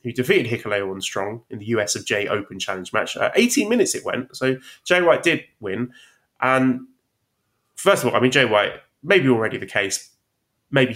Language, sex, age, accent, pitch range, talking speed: English, male, 20-39, British, 110-130 Hz, 195 wpm